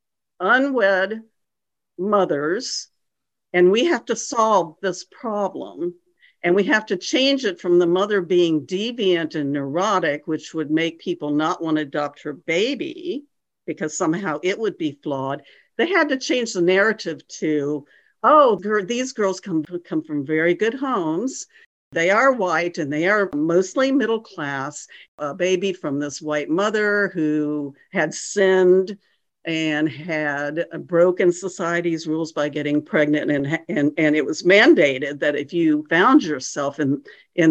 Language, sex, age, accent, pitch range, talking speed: English, female, 60-79, American, 150-205 Hz, 145 wpm